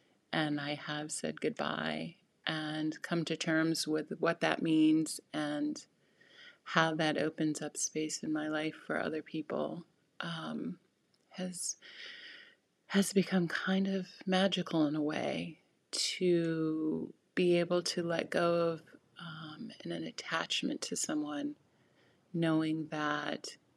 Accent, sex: American, female